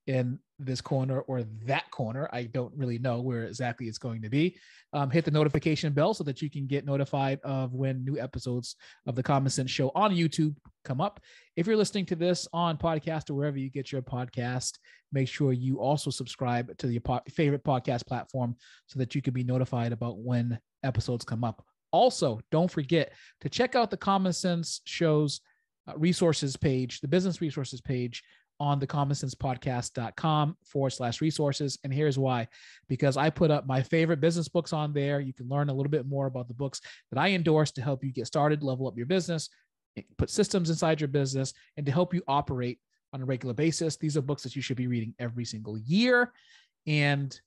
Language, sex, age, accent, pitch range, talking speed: English, male, 30-49, American, 125-155 Hz, 200 wpm